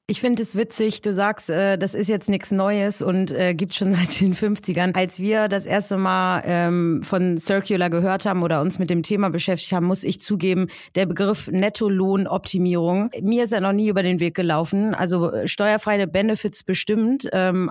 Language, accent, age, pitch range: German, German, 30-49, 180-200 Hz